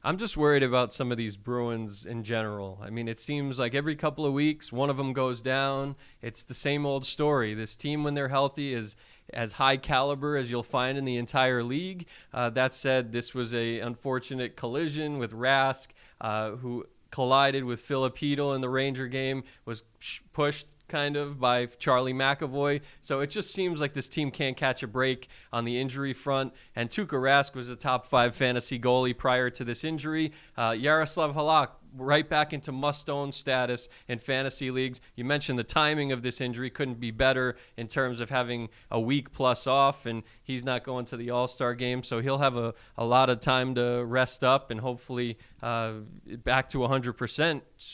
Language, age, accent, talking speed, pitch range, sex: English, 20-39, American, 190 wpm, 120-140 Hz, male